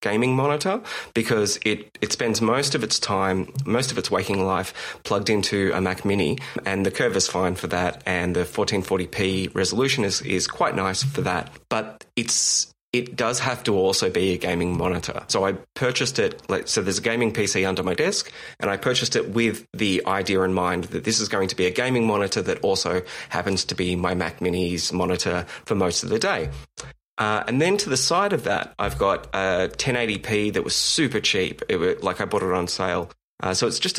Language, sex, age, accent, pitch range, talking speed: English, male, 30-49, Australian, 95-120 Hz, 215 wpm